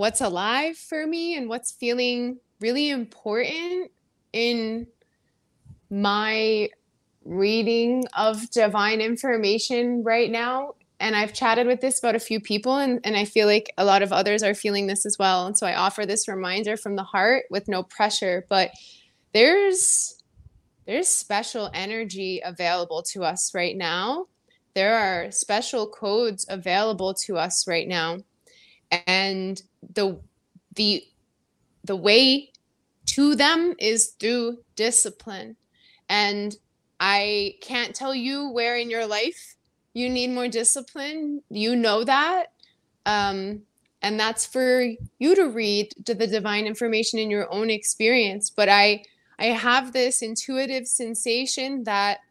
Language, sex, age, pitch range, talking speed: English, female, 20-39, 205-245 Hz, 140 wpm